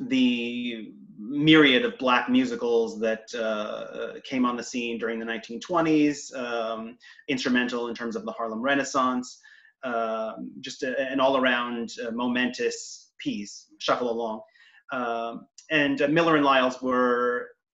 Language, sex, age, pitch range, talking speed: English, male, 30-49, 125-180 Hz, 130 wpm